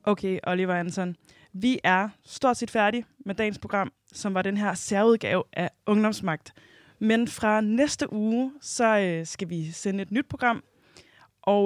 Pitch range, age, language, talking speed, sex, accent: 185-235 Hz, 20-39, Danish, 160 wpm, female, native